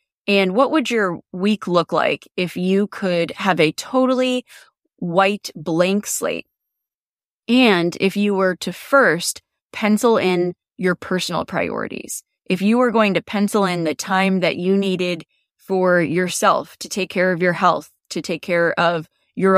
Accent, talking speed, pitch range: American, 160 wpm, 175-215 Hz